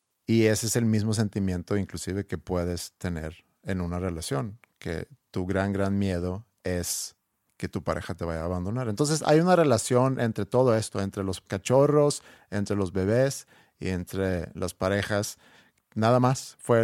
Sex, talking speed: male, 165 wpm